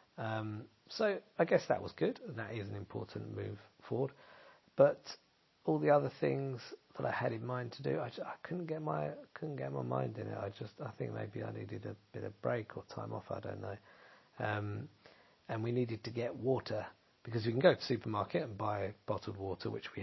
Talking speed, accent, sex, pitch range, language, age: 220 wpm, British, male, 100-120 Hz, English, 50-69